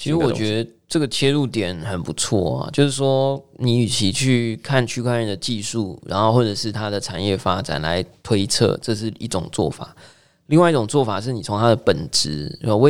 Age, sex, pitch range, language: 20-39, male, 105-145 Hz, Chinese